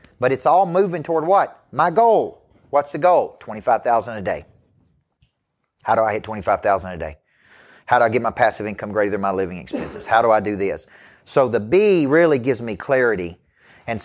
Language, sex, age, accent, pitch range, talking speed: English, male, 40-59, American, 110-150 Hz, 195 wpm